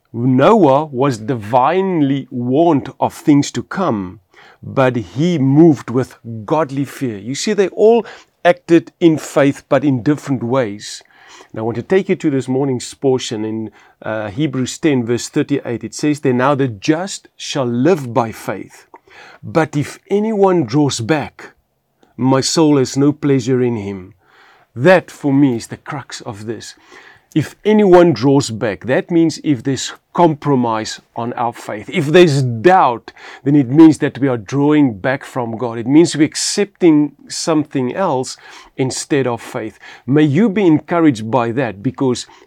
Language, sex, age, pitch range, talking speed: English, male, 40-59, 125-155 Hz, 160 wpm